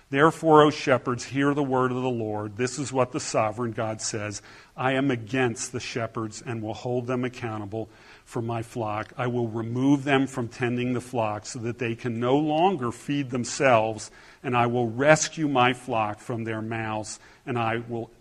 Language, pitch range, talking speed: English, 115-135 Hz, 190 wpm